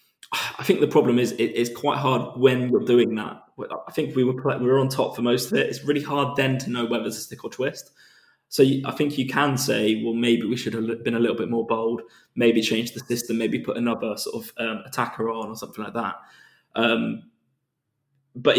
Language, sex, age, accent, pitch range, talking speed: English, male, 20-39, British, 115-125 Hz, 235 wpm